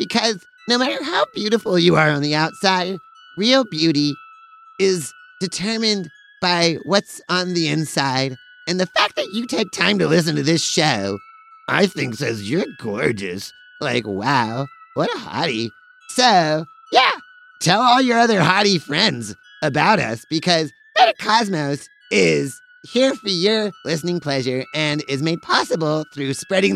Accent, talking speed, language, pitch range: American, 145 wpm, English, 145-220 Hz